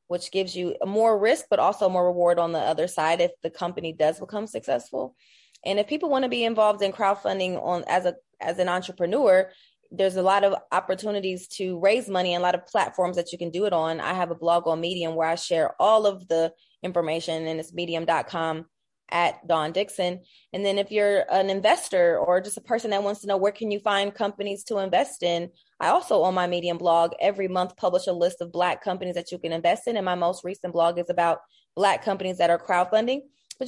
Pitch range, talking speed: 175-205 Hz, 225 wpm